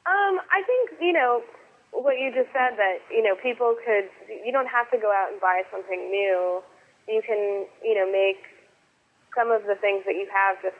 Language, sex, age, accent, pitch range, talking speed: English, female, 20-39, American, 180-215 Hz, 205 wpm